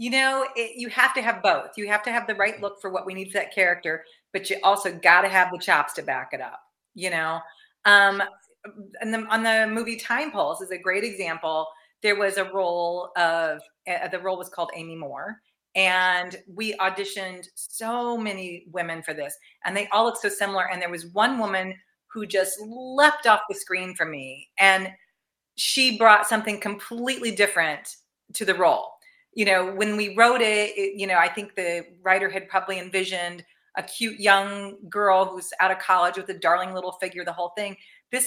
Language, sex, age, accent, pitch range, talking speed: English, female, 40-59, American, 185-225 Hz, 200 wpm